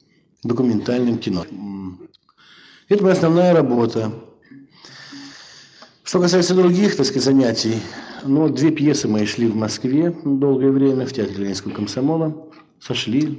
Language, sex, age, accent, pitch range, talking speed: Russian, male, 50-69, native, 110-155 Hz, 115 wpm